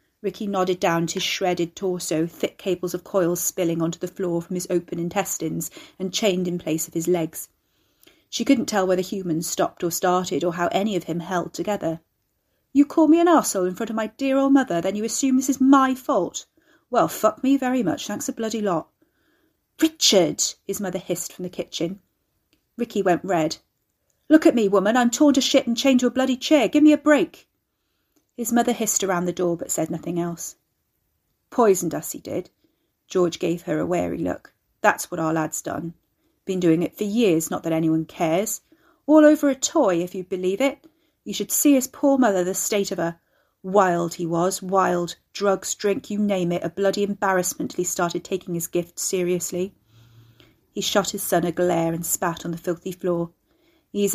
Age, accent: 40-59, British